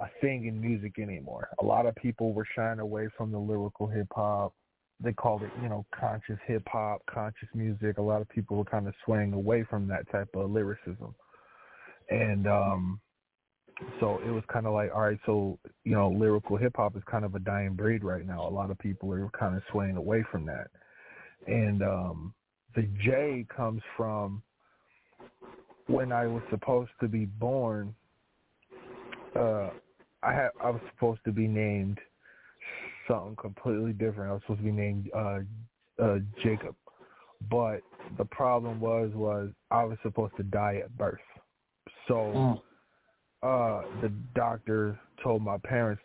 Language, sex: English, male